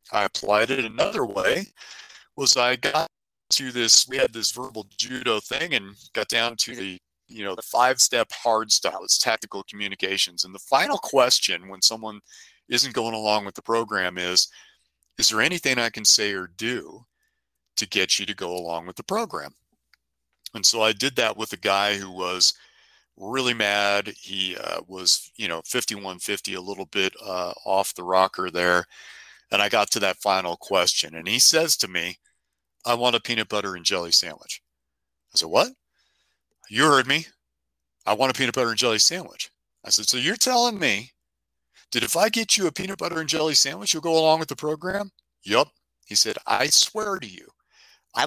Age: 40-59